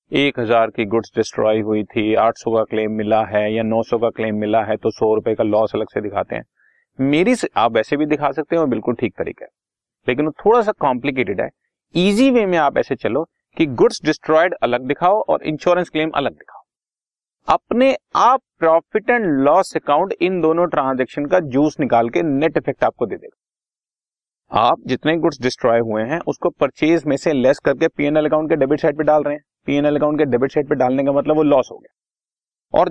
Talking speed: 195 wpm